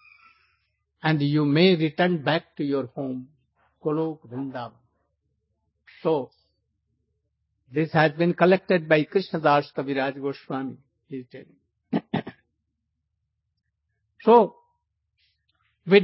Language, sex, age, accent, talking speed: English, male, 60-79, Indian, 95 wpm